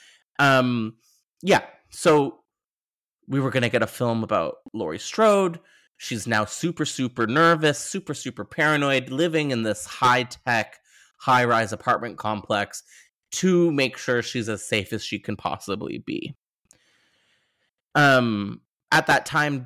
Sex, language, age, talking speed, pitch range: male, English, 20-39, 130 wpm, 120-155 Hz